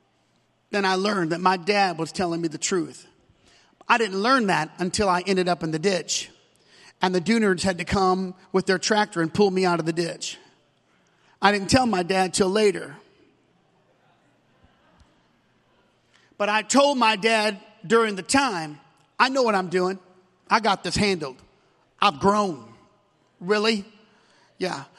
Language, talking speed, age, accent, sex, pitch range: English, 160 wpm, 40-59, American, male, 190-265 Hz